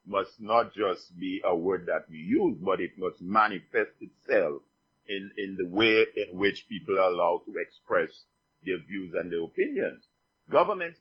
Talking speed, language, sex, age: 170 wpm, English, male, 50-69